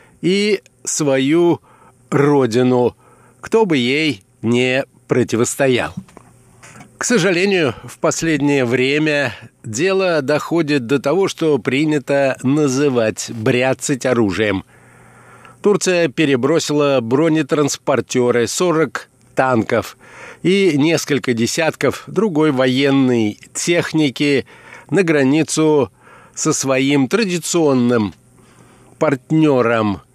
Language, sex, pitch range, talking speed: Russian, male, 125-155 Hz, 80 wpm